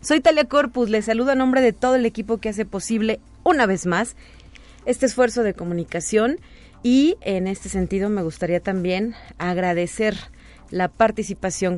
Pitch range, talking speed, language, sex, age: 170-230 Hz, 160 wpm, Spanish, female, 30-49